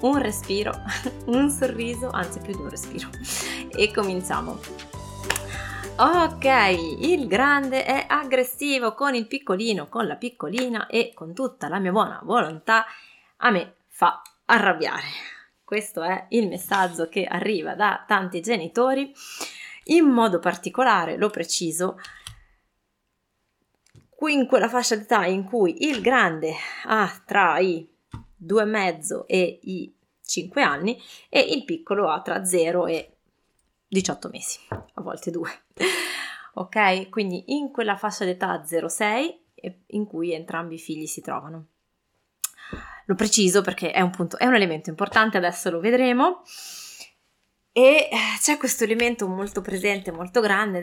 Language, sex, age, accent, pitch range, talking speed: Italian, female, 20-39, native, 175-245 Hz, 135 wpm